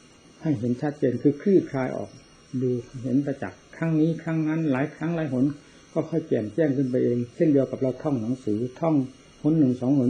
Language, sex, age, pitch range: Thai, male, 60-79, 130-155 Hz